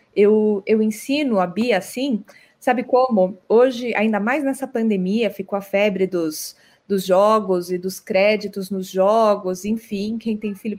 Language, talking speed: Portuguese, 155 wpm